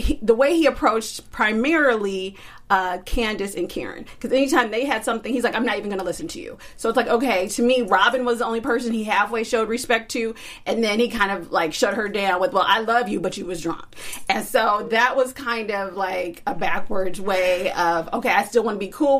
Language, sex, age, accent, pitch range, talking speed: English, female, 30-49, American, 200-255 Hz, 240 wpm